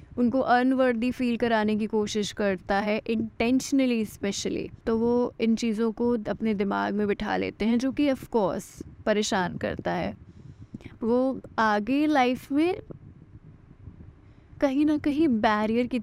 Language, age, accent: Hindi, 20-39, native